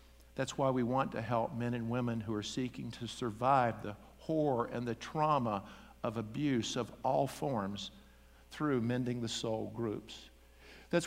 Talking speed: 165 wpm